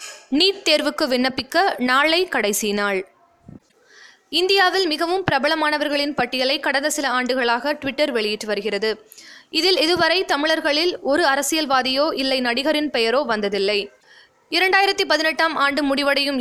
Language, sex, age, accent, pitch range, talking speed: Tamil, female, 20-39, native, 255-345 Hz, 105 wpm